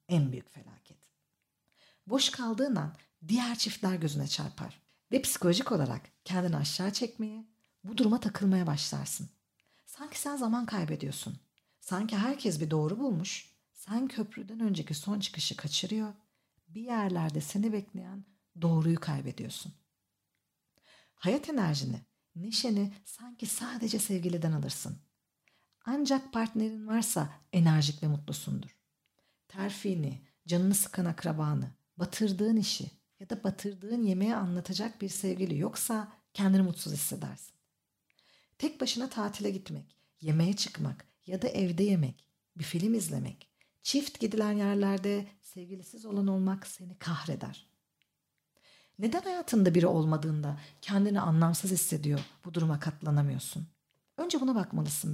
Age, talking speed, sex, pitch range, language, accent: 50-69, 115 wpm, female, 160-220 Hz, Turkish, native